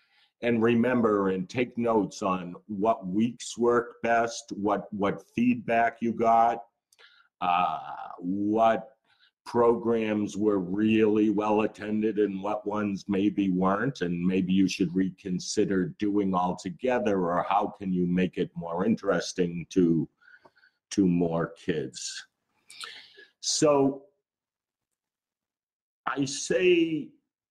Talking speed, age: 110 wpm, 50-69